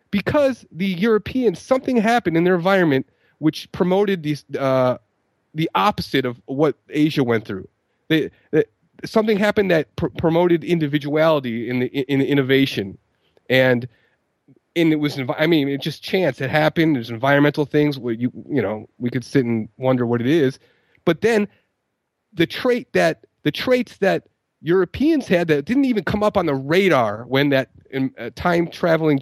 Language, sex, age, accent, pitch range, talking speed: English, male, 30-49, American, 135-185 Hz, 165 wpm